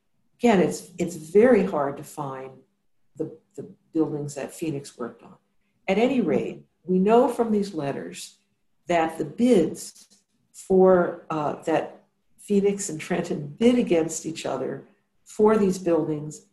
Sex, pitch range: female, 155-205 Hz